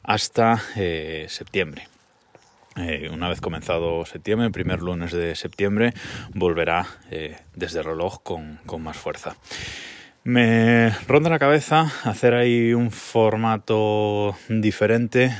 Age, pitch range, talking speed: 20-39, 90-115 Hz, 120 wpm